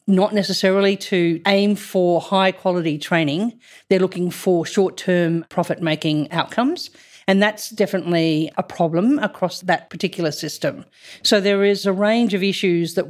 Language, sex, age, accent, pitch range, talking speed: English, female, 40-59, Australian, 170-210 Hz, 140 wpm